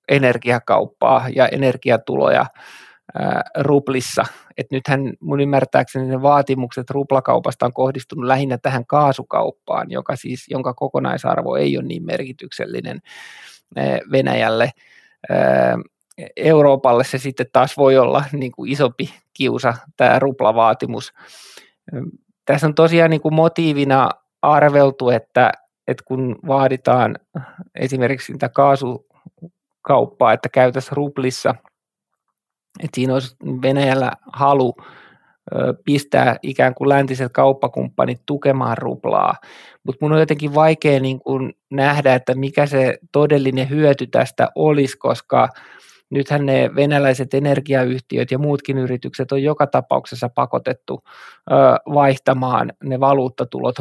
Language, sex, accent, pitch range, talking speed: Finnish, male, native, 130-145 Hz, 110 wpm